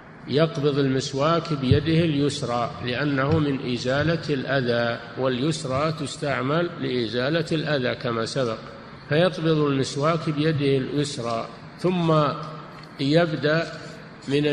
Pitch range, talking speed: 130-155 Hz, 85 wpm